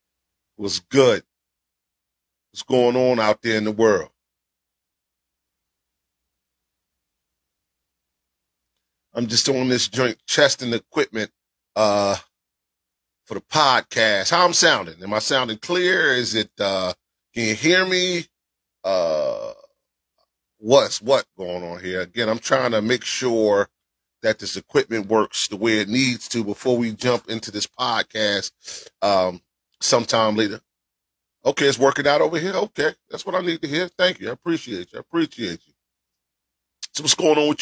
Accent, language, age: American, English, 30-49